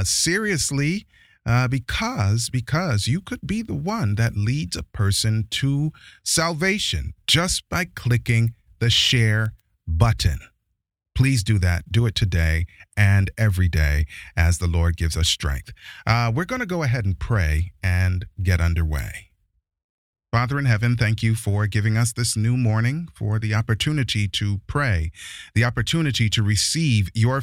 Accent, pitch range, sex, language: American, 95-130 Hz, male, English